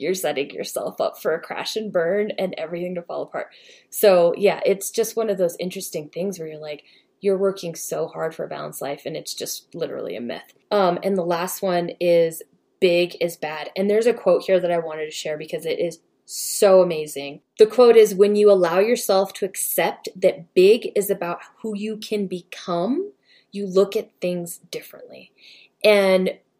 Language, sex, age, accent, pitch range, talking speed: English, female, 20-39, American, 175-225 Hz, 195 wpm